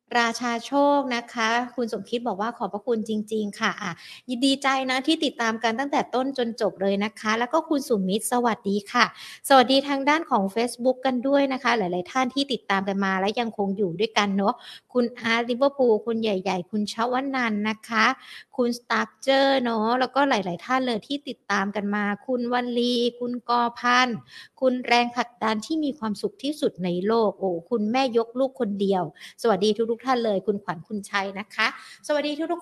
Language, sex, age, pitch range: Thai, female, 60-79, 205-255 Hz